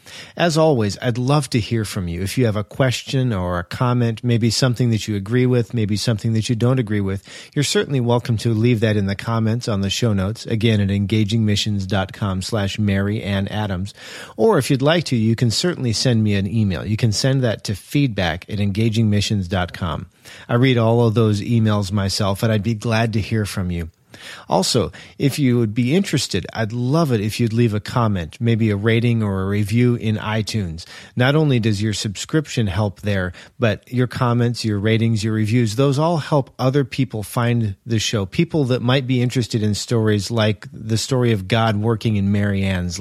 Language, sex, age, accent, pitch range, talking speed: English, male, 40-59, American, 105-125 Hz, 195 wpm